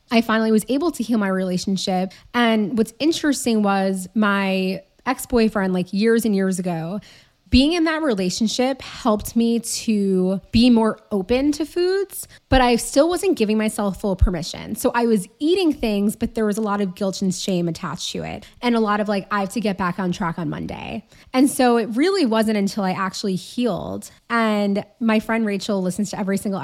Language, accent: English, American